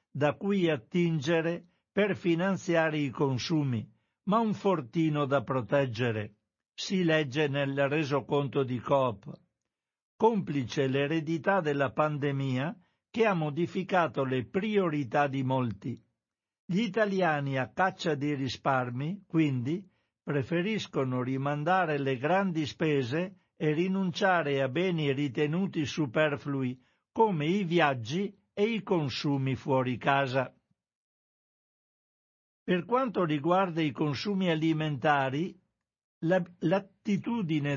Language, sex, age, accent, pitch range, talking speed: Italian, male, 60-79, native, 140-185 Hz, 95 wpm